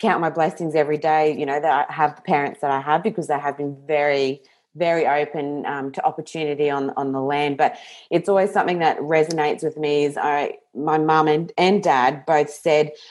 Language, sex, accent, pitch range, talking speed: English, female, Australian, 140-165 Hz, 210 wpm